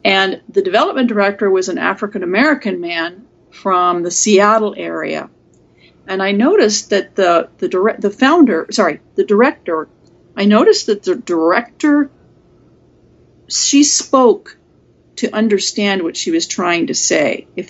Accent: American